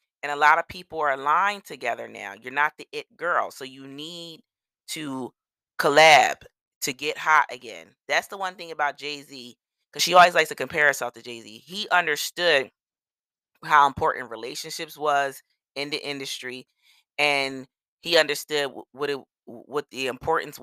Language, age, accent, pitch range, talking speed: English, 30-49, American, 125-160 Hz, 160 wpm